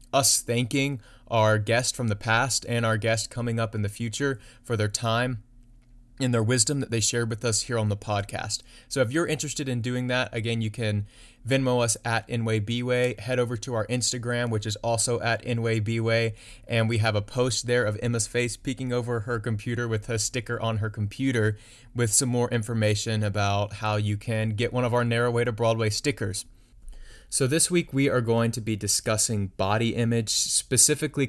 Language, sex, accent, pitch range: English, male, American, 105-120 Hz